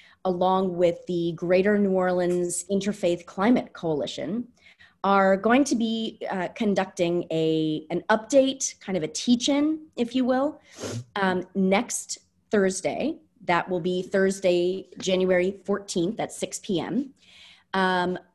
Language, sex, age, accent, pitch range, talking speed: English, female, 30-49, American, 170-235 Hz, 125 wpm